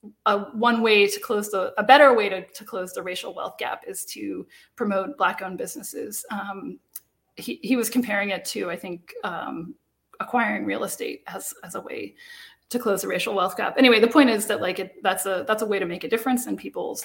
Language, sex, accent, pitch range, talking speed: English, female, American, 195-250 Hz, 220 wpm